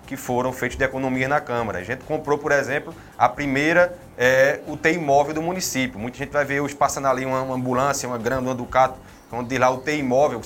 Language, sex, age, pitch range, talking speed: Portuguese, male, 20-39, 120-140 Hz, 220 wpm